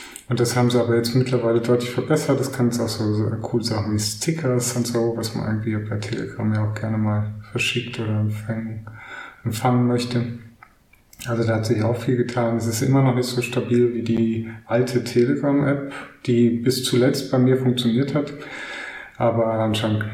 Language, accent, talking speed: German, German, 185 wpm